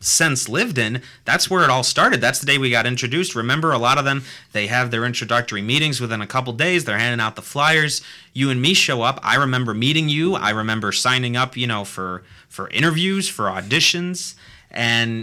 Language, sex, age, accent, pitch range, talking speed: English, male, 30-49, American, 110-140 Hz, 215 wpm